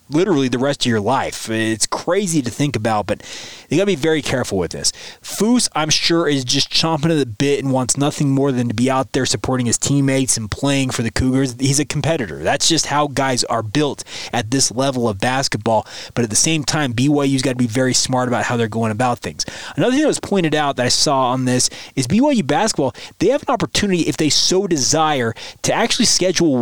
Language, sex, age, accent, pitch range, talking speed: English, male, 20-39, American, 125-150 Hz, 230 wpm